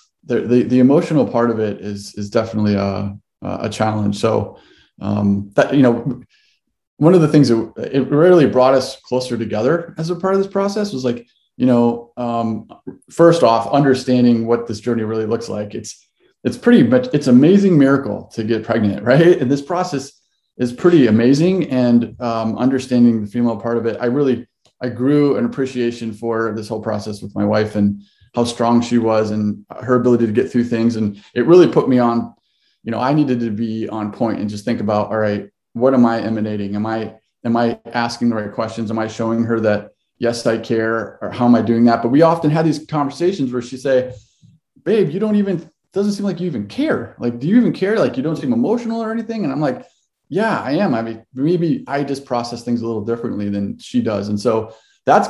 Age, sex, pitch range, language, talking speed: 20-39, male, 110-145 Hz, English, 215 wpm